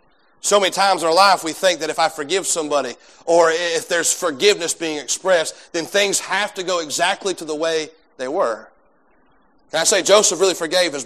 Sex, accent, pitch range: male, American, 185-230 Hz